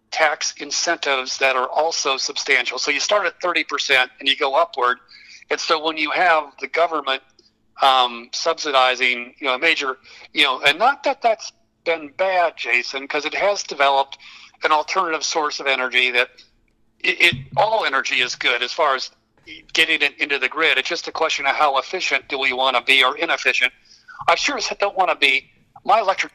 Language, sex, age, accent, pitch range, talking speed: English, male, 50-69, American, 130-160 Hz, 190 wpm